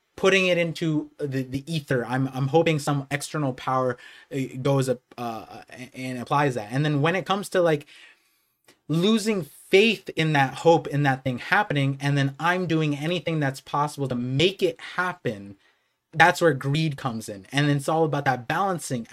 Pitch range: 135-185 Hz